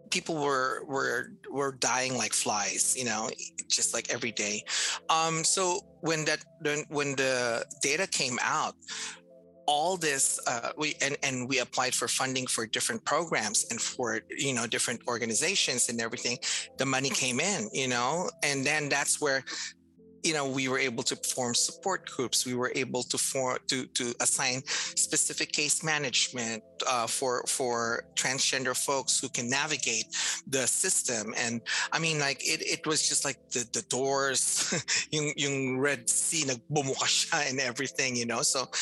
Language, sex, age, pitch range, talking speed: English, male, 30-49, 125-155 Hz, 160 wpm